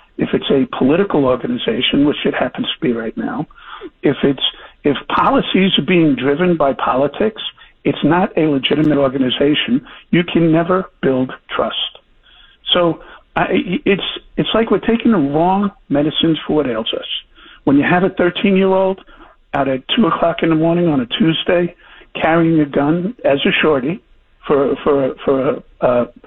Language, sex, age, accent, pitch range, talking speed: English, male, 50-69, American, 145-205 Hz, 170 wpm